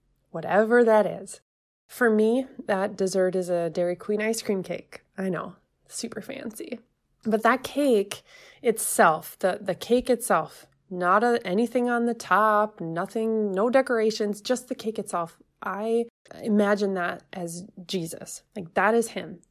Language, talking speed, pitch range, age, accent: English, 145 wpm, 190-235 Hz, 20-39, American